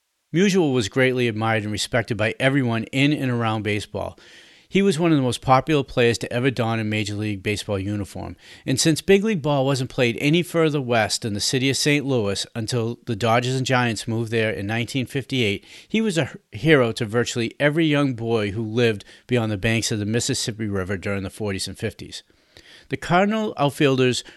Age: 40-59